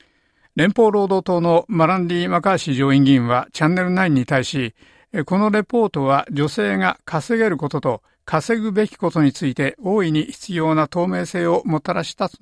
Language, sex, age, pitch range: Japanese, male, 60-79, 140-190 Hz